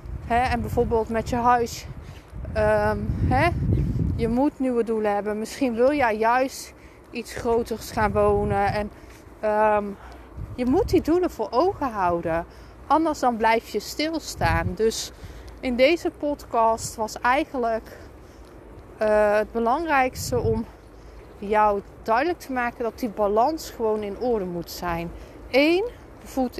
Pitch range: 205-255 Hz